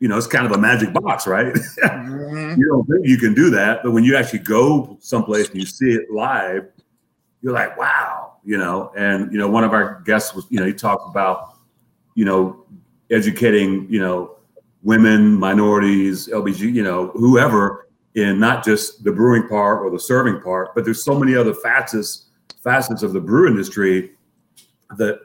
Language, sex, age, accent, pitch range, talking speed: English, male, 40-59, American, 100-120 Hz, 185 wpm